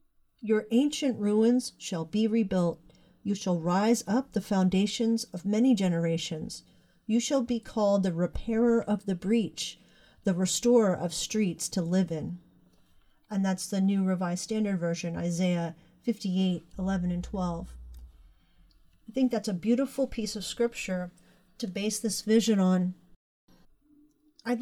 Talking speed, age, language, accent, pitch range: 140 wpm, 40-59, English, American, 185-230 Hz